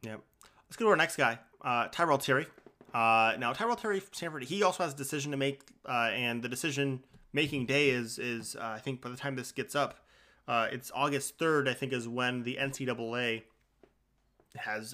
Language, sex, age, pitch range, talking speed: English, male, 30-49, 115-140 Hz, 205 wpm